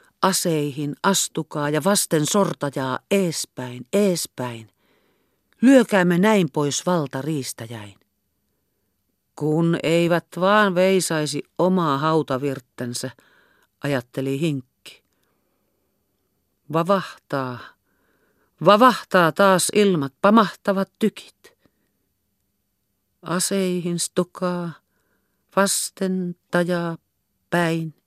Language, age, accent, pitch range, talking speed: Finnish, 50-69, native, 130-190 Hz, 65 wpm